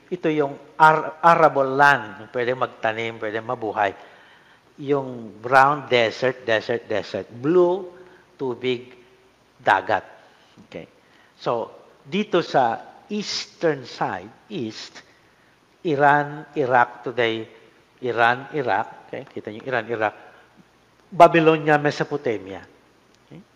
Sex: male